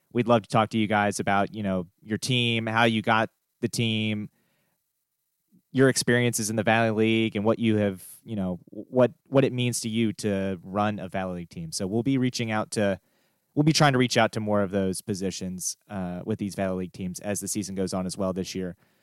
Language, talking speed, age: English, 230 wpm, 30-49